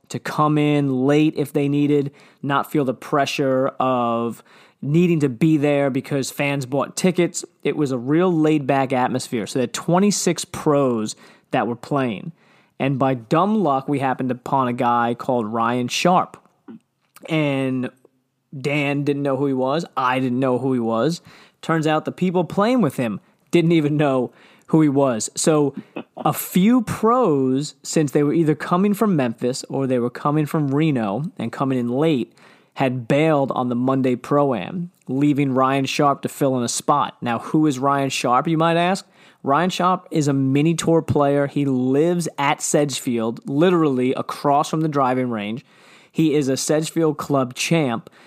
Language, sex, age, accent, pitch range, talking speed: English, male, 20-39, American, 130-160 Hz, 170 wpm